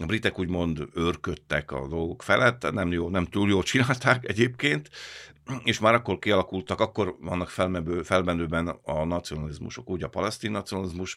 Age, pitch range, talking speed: 50-69, 80-100 Hz, 145 wpm